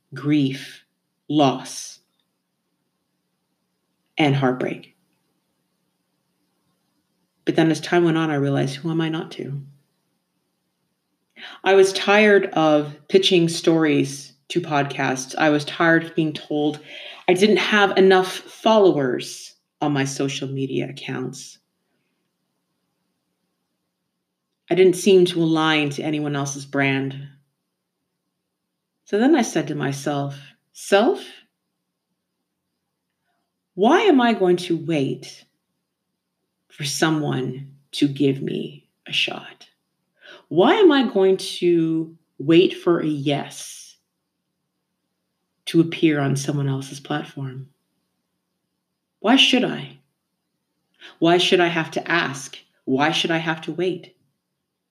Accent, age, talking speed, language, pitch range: American, 40-59, 110 wpm, English, 140-180 Hz